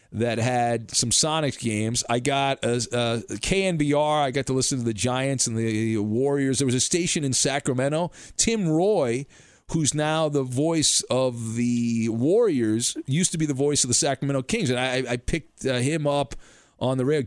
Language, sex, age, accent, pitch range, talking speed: English, male, 40-59, American, 120-165 Hz, 185 wpm